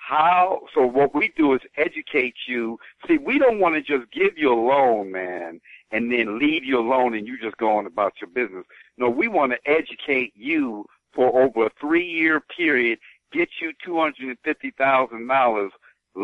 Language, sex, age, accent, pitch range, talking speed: English, male, 60-79, American, 120-175 Hz, 170 wpm